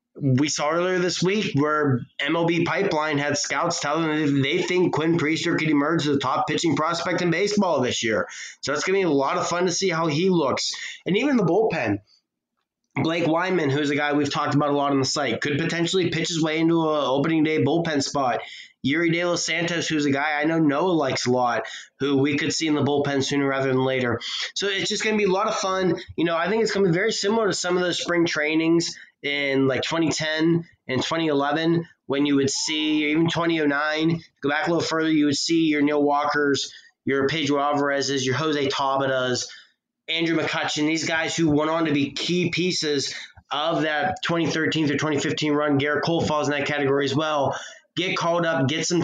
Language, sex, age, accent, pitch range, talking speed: English, male, 20-39, American, 145-170 Hz, 215 wpm